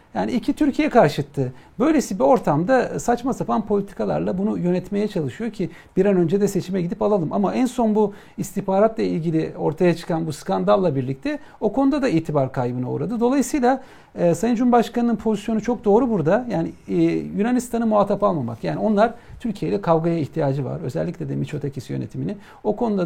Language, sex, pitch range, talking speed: Turkish, male, 155-210 Hz, 165 wpm